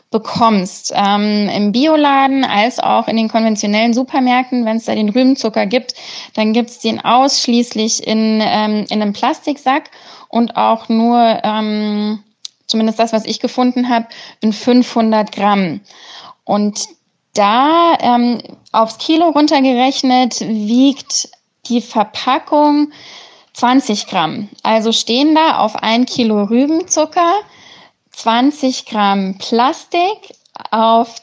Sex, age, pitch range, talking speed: female, 20-39, 215-270 Hz, 115 wpm